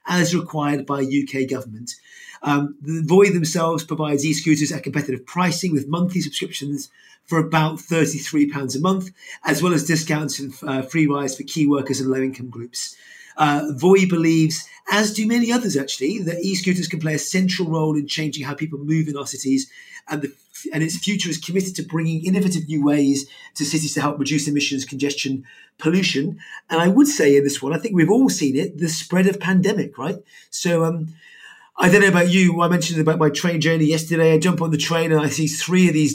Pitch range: 150-185 Hz